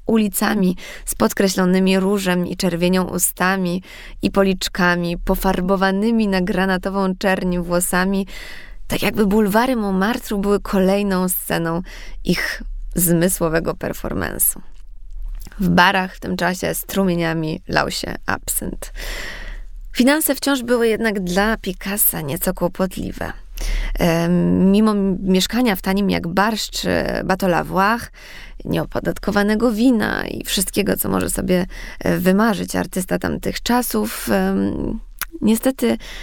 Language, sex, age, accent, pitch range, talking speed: Polish, female, 20-39, native, 180-210 Hz, 105 wpm